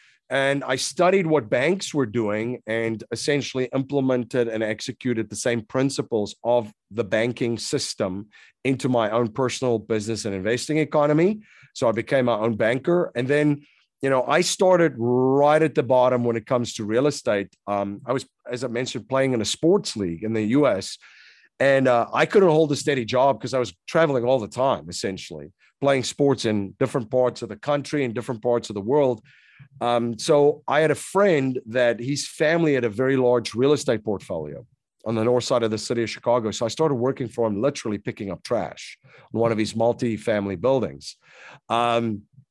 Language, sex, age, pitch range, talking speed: English, male, 40-59, 115-140 Hz, 190 wpm